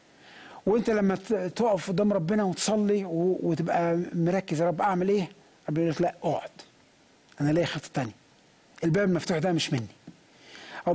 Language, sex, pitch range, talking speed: English, male, 175-230 Hz, 150 wpm